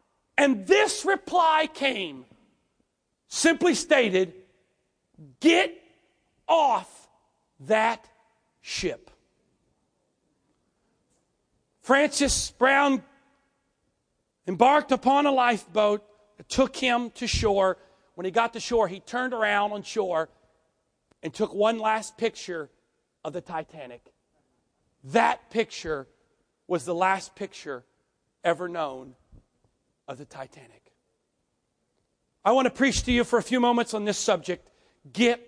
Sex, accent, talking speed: male, American, 110 wpm